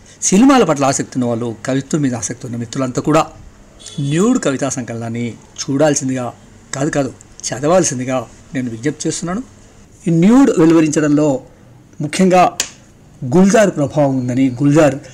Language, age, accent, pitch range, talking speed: Telugu, 50-69, native, 125-160 Hz, 110 wpm